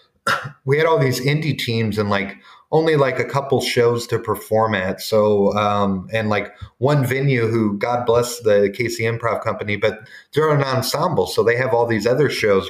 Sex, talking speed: male, 190 wpm